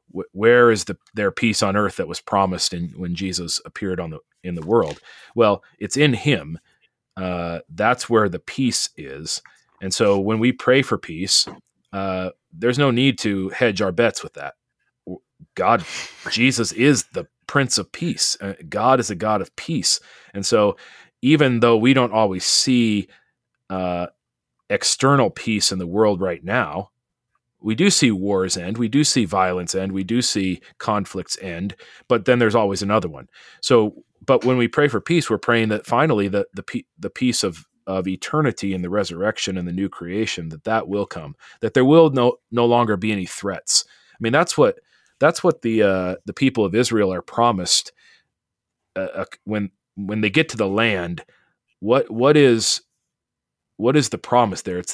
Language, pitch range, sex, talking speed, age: English, 95-125 Hz, male, 180 wpm, 30-49